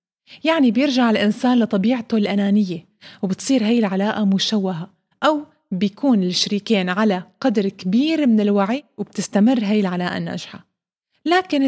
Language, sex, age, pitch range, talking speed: Arabic, female, 20-39, 200-245 Hz, 115 wpm